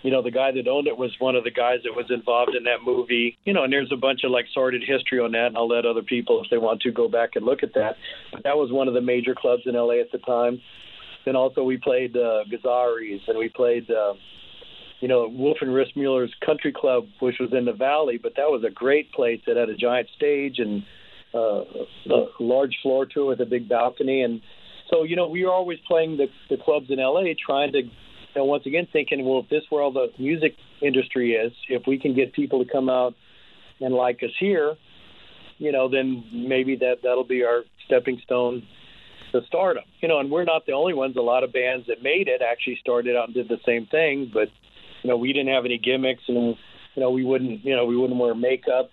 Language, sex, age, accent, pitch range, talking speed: English, male, 50-69, American, 120-145 Hz, 240 wpm